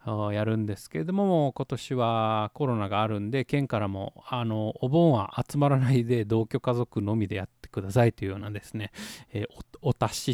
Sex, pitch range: male, 110-135 Hz